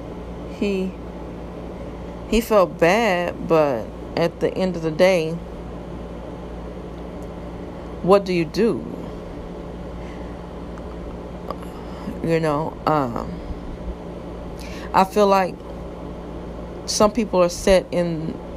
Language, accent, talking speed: English, American, 85 wpm